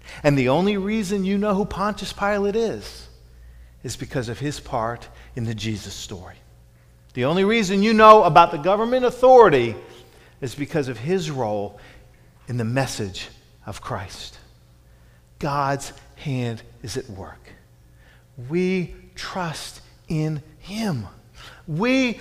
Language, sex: English, male